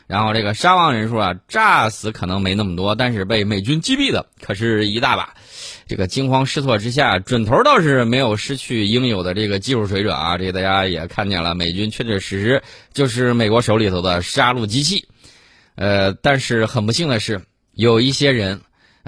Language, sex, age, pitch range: Chinese, male, 20-39, 95-130 Hz